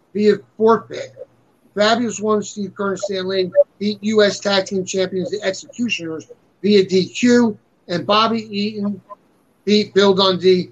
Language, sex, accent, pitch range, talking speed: English, male, American, 185-210 Hz, 135 wpm